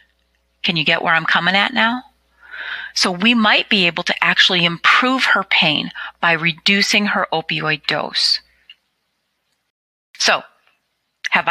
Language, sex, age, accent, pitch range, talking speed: English, female, 30-49, American, 170-230 Hz, 130 wpm